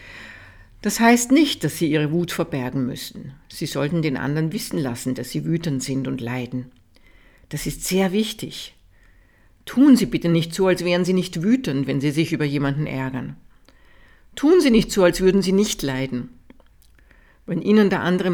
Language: German